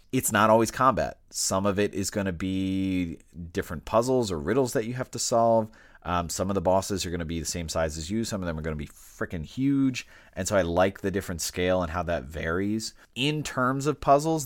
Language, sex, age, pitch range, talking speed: English, male, 30-49, 85-110 Hz, 240 wpm